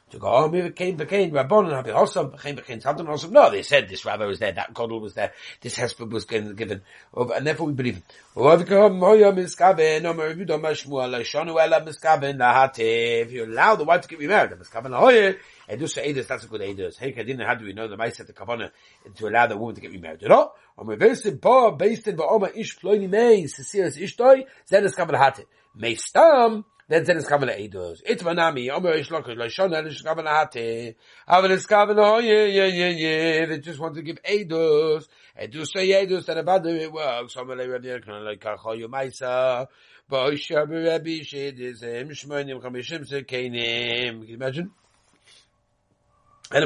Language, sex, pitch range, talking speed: English, male, 120-180 Hz, 65 wpm